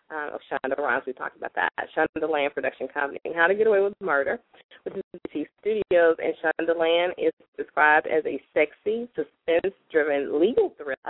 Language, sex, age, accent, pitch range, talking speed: English, female, 20-39, American, 150-205 Hz, 180 wpm